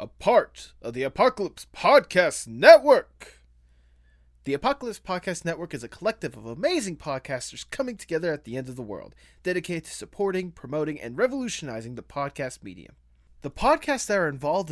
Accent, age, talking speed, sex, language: American, 20-39, 160 wpm, male, English